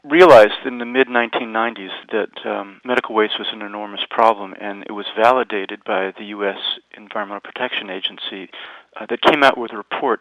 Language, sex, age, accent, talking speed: English, male, 40-59, American, 170 wpm